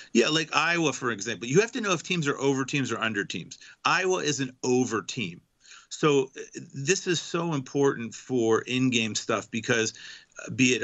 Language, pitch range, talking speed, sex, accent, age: English, 120-150 Hz, 185 wpm, male, American, 40-59